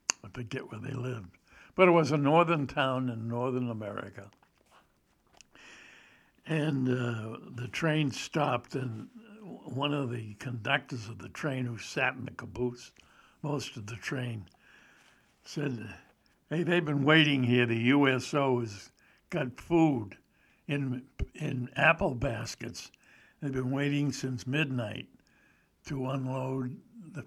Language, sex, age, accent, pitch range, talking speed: English, male, 60-79, American, 120-145 Hz, 130 wpm